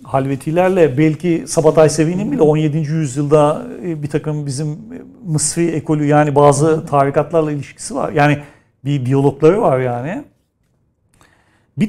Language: Turkish